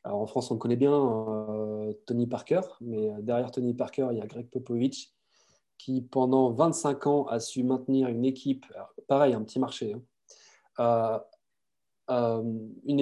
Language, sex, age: French, male, 20-39